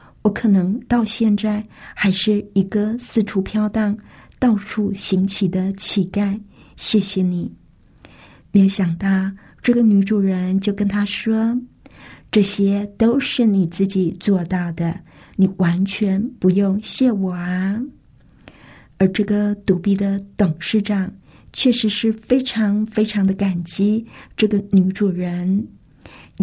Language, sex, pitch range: Chinese, female, 195-220 Hz